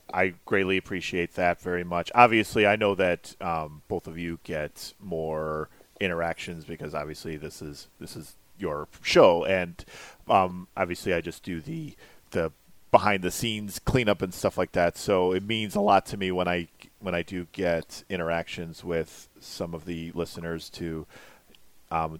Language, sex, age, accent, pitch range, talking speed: English, male, 40-59, American, 85-100 Hz, 170 wpm